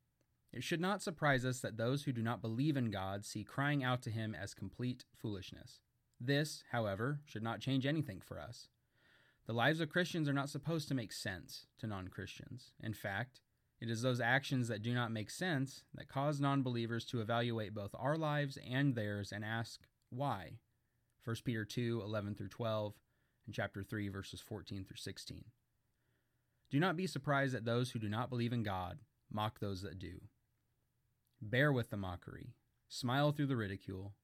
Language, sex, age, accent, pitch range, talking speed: English, male, 20-39, American, 110-130 Hz, 180 wpm